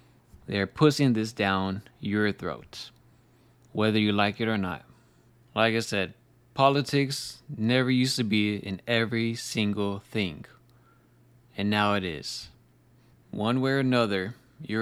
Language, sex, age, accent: English, male, 20-39, American